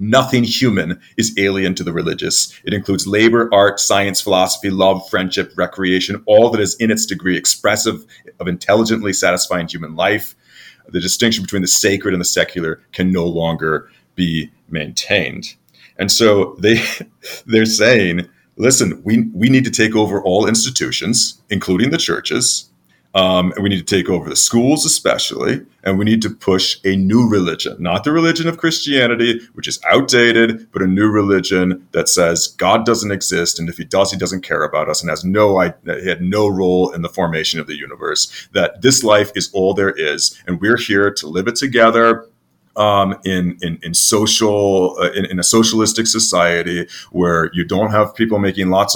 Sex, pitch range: male, 90-110 Hz